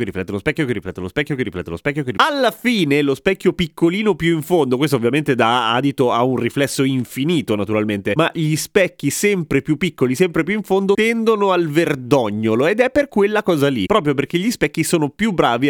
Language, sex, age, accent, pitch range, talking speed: Italian, male, 30-49, native, 130-175 Hz, 220 wpm